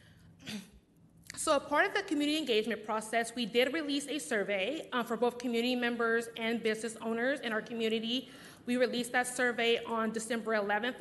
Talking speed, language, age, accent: 170 wpm, English, 20-39, American